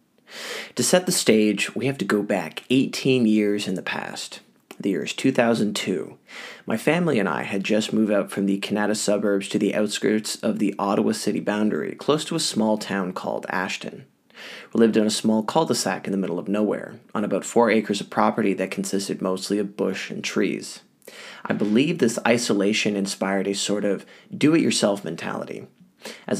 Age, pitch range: 20-39, 100-120 Hz